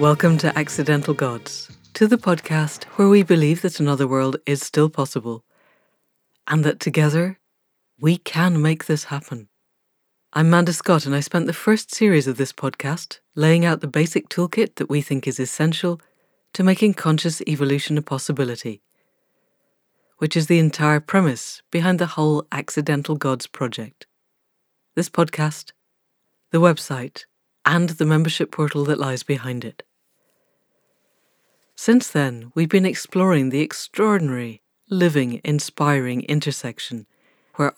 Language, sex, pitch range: English, female, 140-175 Hz